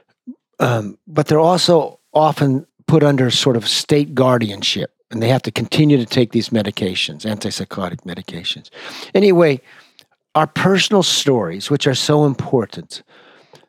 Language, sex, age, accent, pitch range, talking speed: English, male, 50-69, American, 120-155 Hz, 130 wpm